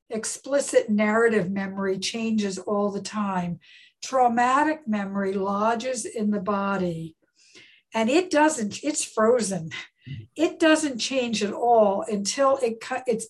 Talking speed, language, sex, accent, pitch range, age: 115 wpm, English, female, American, 200-245 Hz, 60-79